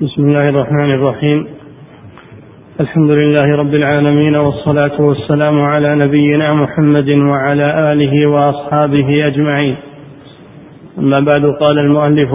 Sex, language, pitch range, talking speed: male, Arabic, 145-150 Hz, 100 wpm